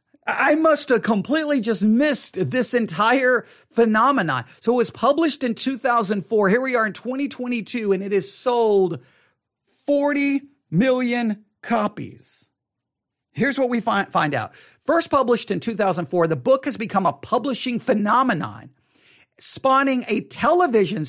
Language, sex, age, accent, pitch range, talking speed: English, male, 40-59, American, 185-255 Hz, 130 wpm